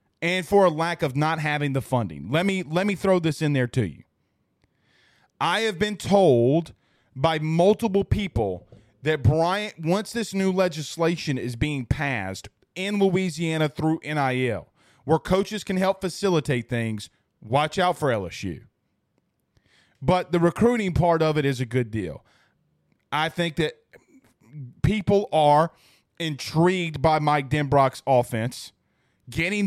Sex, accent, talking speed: male, American, 140 wpm